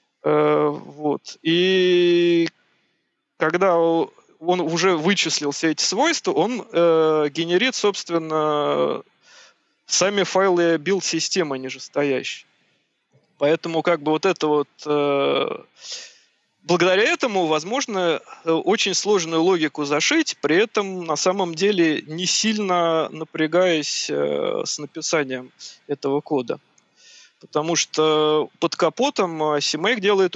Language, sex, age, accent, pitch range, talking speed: Russian, male, 20-39, native, 150-185 Hz, 100 wpm